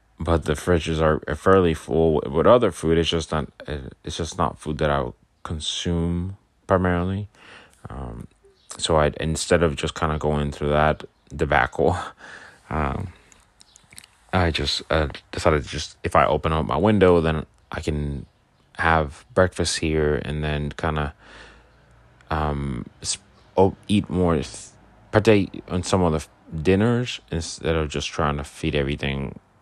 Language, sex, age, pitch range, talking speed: English, male, 20-39, 70-85 Hz, 150 wpm